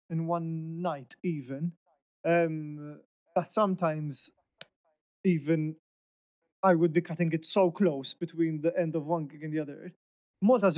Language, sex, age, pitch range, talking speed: English, male, 30-49, 155-180 Hz, 140 wpm